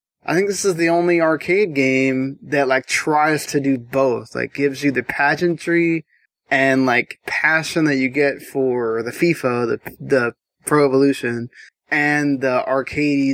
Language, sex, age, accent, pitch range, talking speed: English, male, 20-39, American, 130-150 Hz, 160 wpm